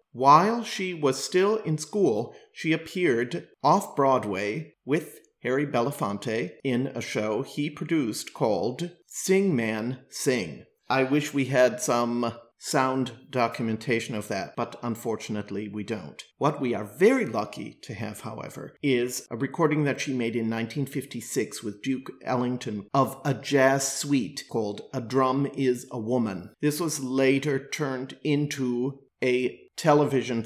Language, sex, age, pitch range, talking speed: English, male, 40-59, 115-135 Hz, 140 wpm